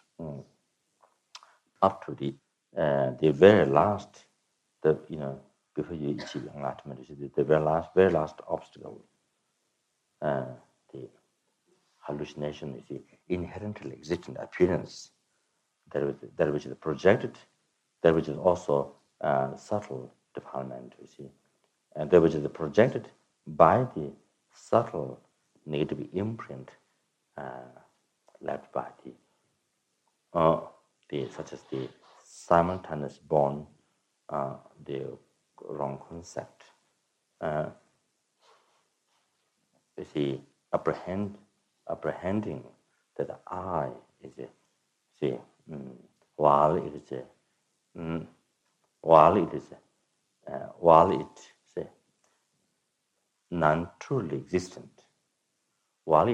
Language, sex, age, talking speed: English, male, 60-79, 105 wpm